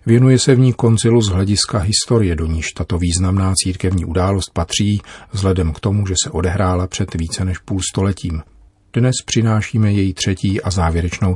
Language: Czech